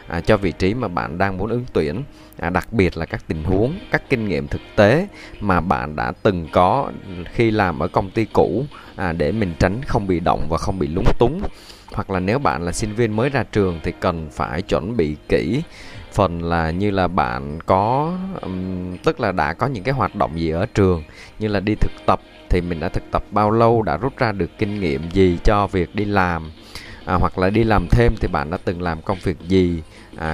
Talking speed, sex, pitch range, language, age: 225 wpm, male, 85-105 Hz, Vietnamese, 20-39